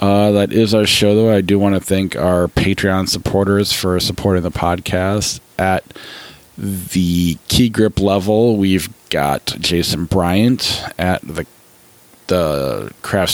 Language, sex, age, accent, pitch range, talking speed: English, male, 40-59, American, 85-100 Hz, 140 wpm